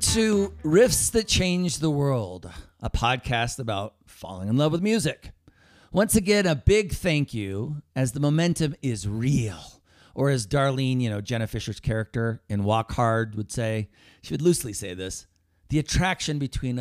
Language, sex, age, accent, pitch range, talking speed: English, male, 40-59, American, 105-140 Hz, 165 wpm